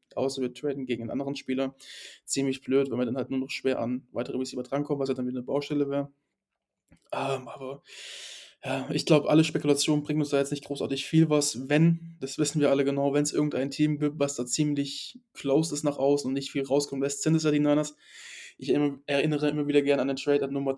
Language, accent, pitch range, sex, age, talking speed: German, German, 135-145 Hz, male, 20-39, 235 wpm